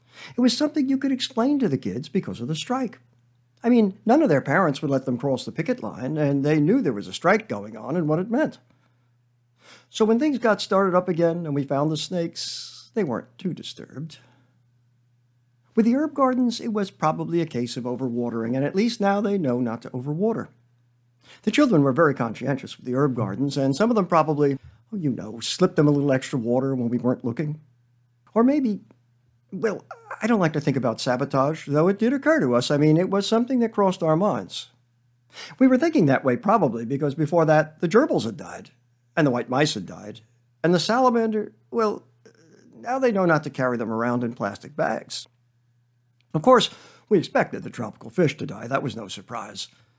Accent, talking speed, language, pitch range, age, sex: American, 210 wpm, English, 120-200 Hz, 50-69, male